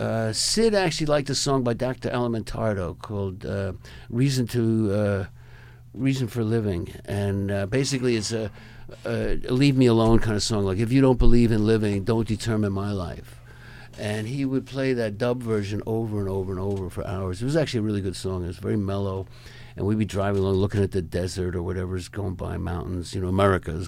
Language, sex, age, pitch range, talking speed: English, male, 60-79, 105-140 Hz, 200 wpm